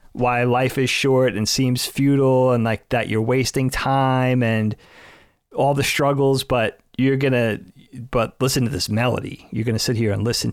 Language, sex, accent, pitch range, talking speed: English, male, American, 110-135 Hz, 190 wpm